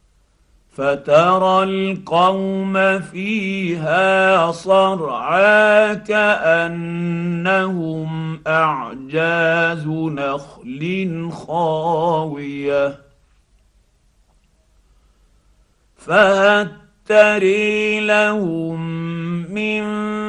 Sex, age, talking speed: male, 50-69, 35 wpm